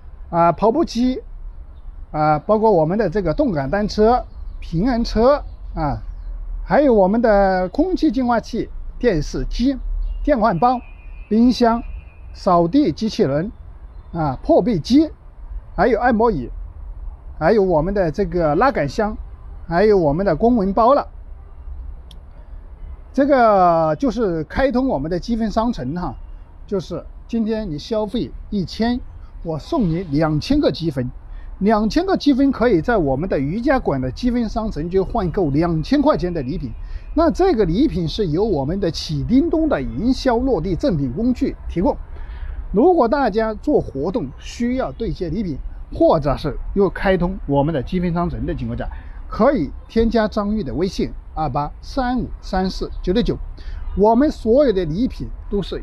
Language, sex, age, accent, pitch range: Chinese, male, 50-69, native, 155-245 Hz